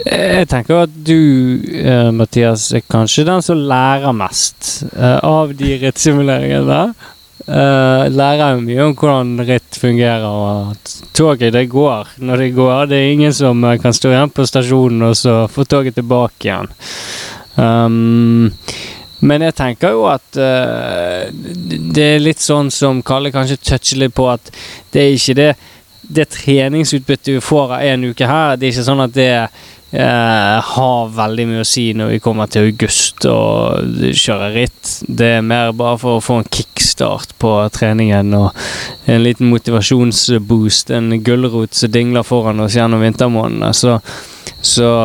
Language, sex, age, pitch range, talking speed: English, male, 20-39, 115-140 Hz, 155 wpm